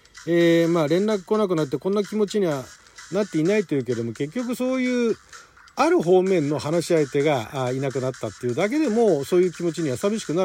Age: 40-59